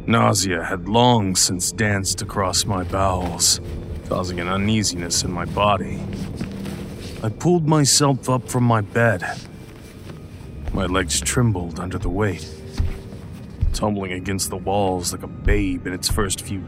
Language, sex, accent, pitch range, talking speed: English, male, American, 90-115 Hz, 135 wpm